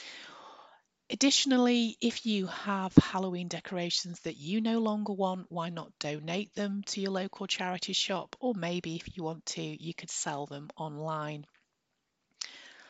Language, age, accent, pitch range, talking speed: English, 30-49, British, 160-190 Hz, 145 wpm